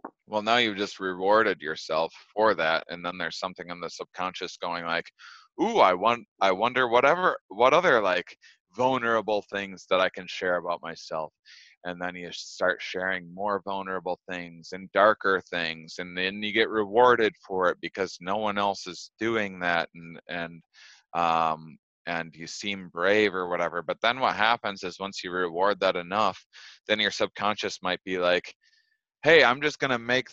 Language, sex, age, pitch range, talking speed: English, male, 20-39, 90-110 Hz, 180 wpm